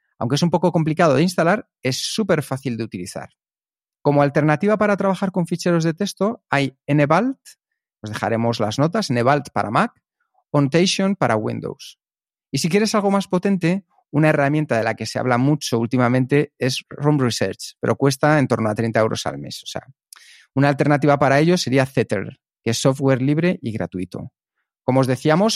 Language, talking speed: Spanish, 180 wpm